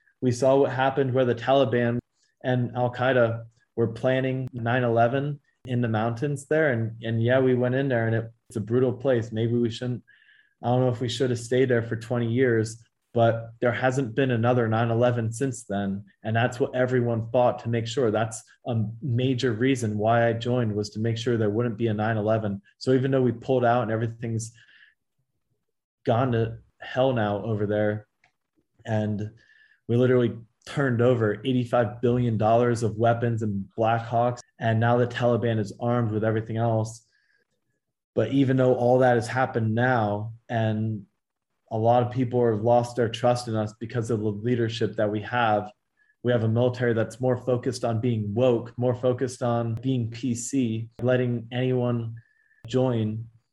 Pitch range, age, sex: 115-125 Hz, 20-39, male